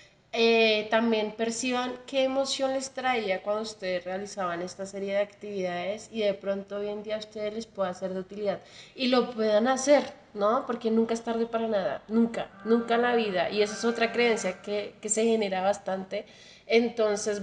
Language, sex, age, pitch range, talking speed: Spanish, female, 20-39, 195-230 Hz, 185 wpm